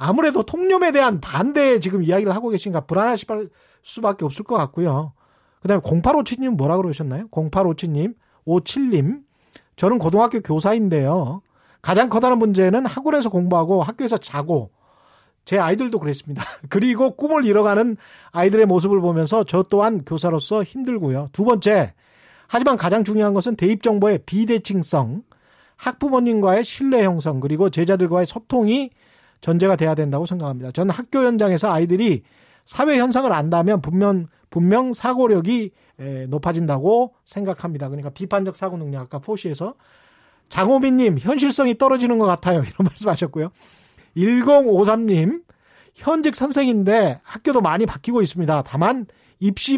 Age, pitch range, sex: 40-59, 170-240 Hz, male